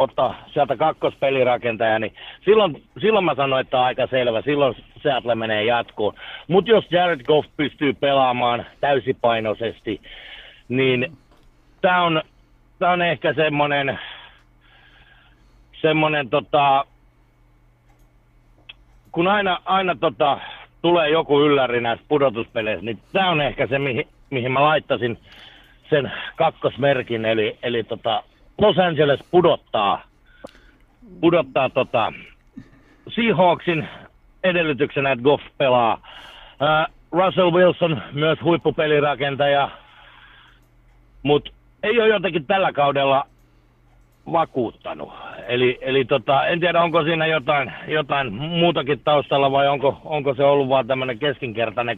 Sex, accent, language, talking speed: male, native, Finnish, 110 wpm